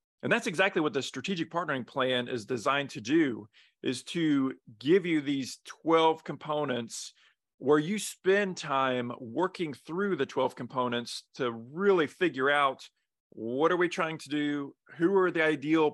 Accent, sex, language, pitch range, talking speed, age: American, male, English, 140-180 Hz, 160 wpm, 40-59